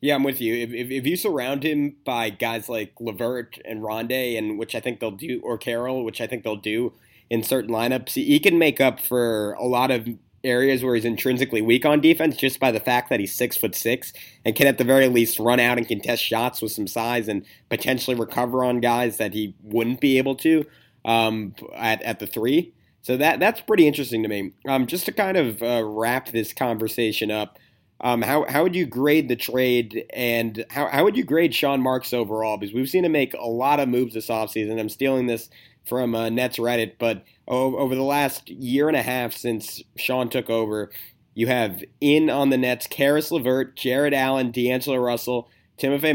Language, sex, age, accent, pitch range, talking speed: English, male, 30-49, American, 115-135 Hz, 210 wpm